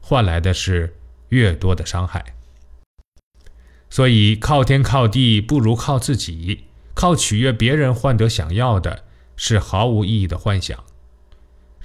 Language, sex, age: Chinese, male, 20-39